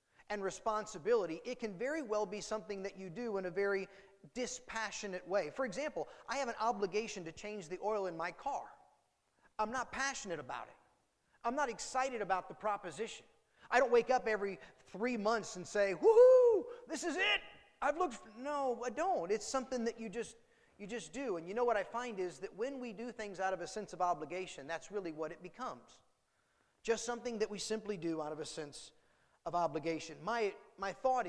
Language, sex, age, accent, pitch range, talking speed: English, male, 30-49, American, 190-250 Hz, 200 wpm